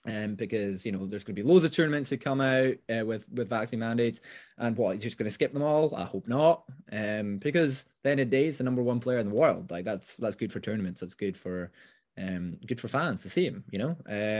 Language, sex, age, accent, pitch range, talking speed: English, male, 20-39, British, 100-140 Hz, 265 wpm